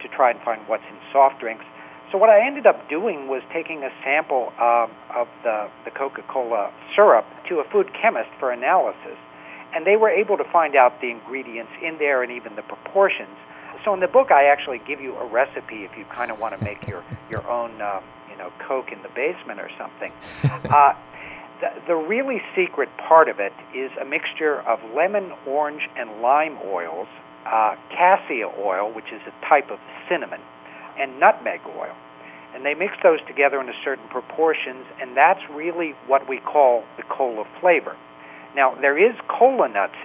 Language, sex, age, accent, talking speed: English, male, 60-79, American, 190 wpm